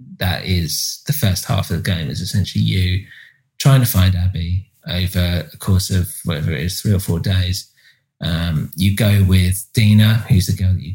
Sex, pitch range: male, 90-115 Hz